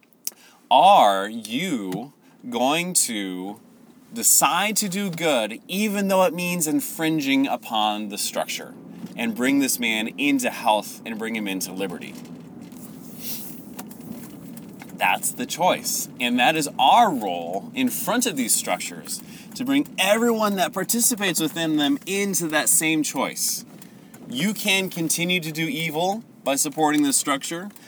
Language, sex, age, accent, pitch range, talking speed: English, male, 30-49, American, 145-240 Hz, 130 wpm